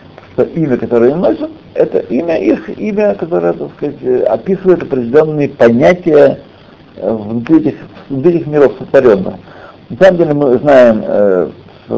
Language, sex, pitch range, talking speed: Russian, male, 110-155 Hz, 130 wpm